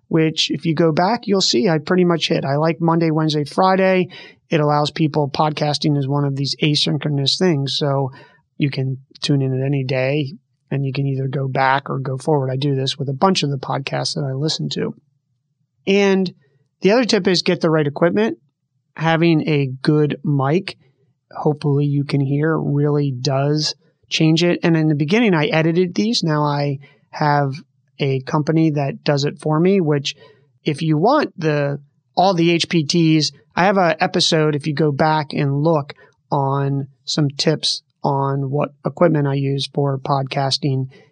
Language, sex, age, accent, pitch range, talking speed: English, male, 30-49, American, 140-165 Hz, 180 wpm